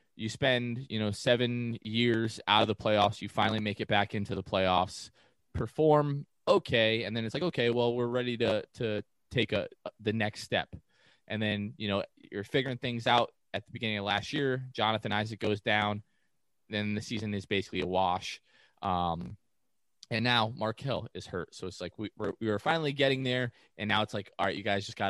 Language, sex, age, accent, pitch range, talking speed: English, male, 20-39, American, 100-115 Hz, 205 wpm